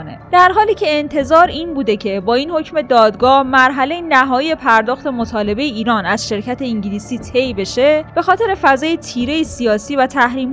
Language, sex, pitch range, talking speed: Persian, female, 215-275 Hz, 160 wpm